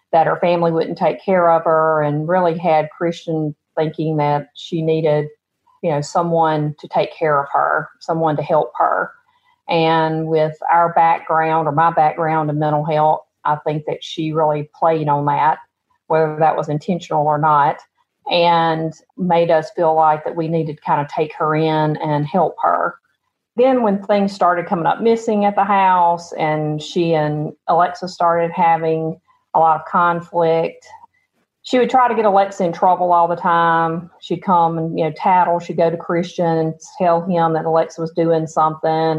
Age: 40-59